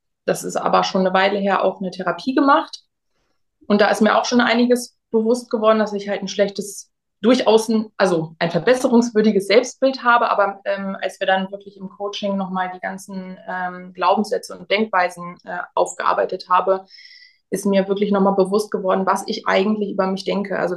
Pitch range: 190-220 Hz